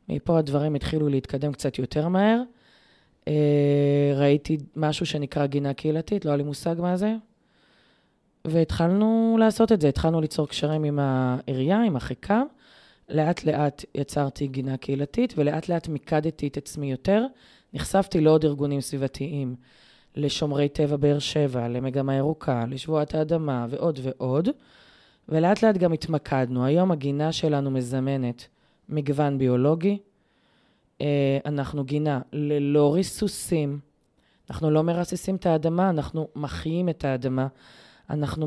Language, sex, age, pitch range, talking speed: Hebrew, female, 20-39, 140-170 Hz, 125 wpm